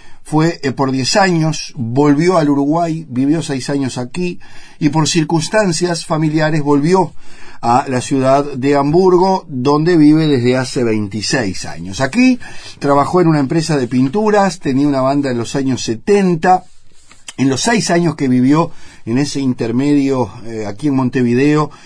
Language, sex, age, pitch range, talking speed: Spanish, male, 50-69, 125-165 Hz, 150 wpm